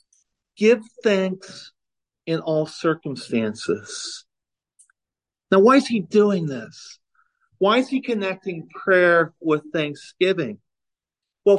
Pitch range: 155-220 Hz